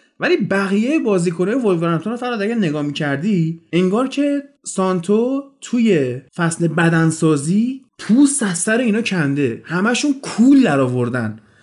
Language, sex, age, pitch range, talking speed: Persian, male, 30-49, 155-225 Hz, 125 wpm